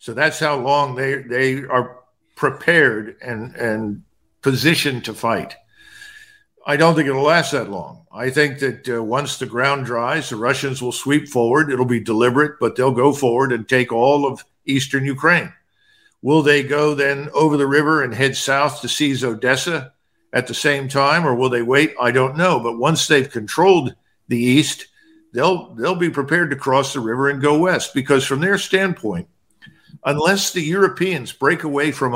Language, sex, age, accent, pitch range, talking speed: English, male, 50-69, American, 125-155 Hz, 180 wpm